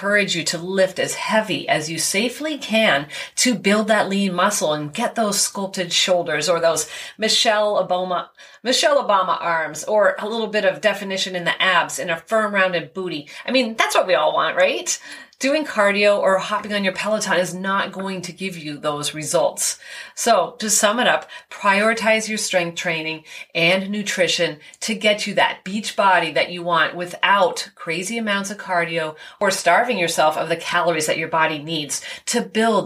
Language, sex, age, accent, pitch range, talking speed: English, female, 30-49, American, 165-215 Hz, 185 wpm